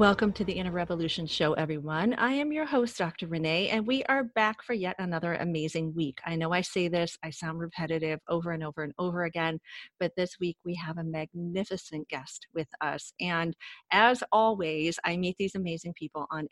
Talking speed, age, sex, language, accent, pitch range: 200 wpm, 40-59, female, English, American, 165-230 Hz